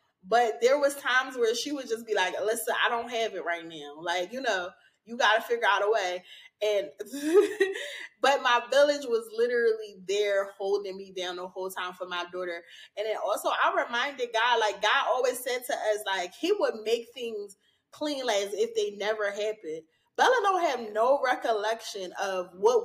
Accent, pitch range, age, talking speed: American, 205-305 Hz, 20-39, 190 wpm